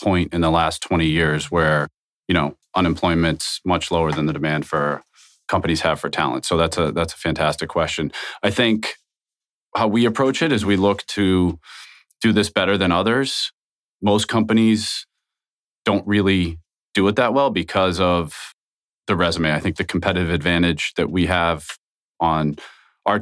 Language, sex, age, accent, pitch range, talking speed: English, male, 30-49, American, 85-105 Hz, 165 wpm